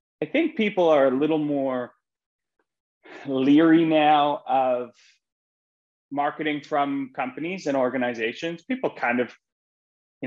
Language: English